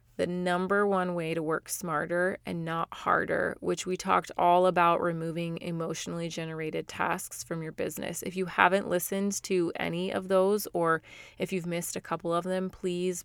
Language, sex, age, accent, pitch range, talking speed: English, female, 20-39, American, 165-190 Hz, 175 wpm